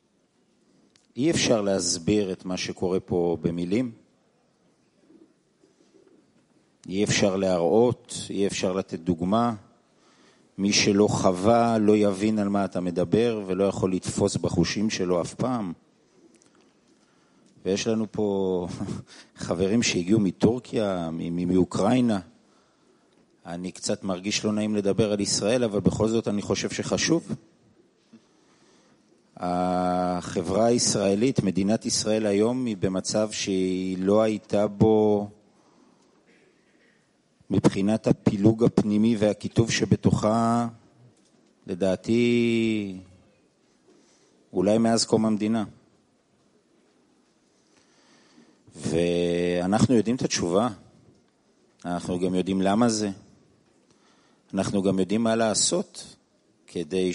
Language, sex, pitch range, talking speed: English, male, 95-110 Hz, 90 wpm